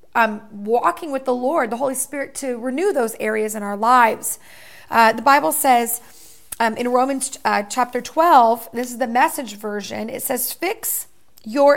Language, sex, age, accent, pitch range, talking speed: English, female, 30-49, American, 230-285 Hz, 175 wpm